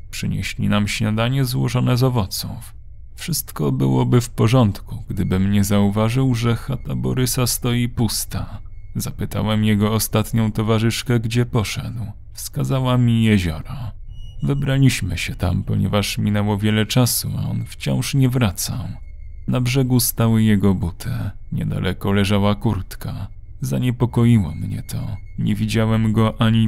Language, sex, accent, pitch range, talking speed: Polish, male, native, 100-120 Hz, 120 wpm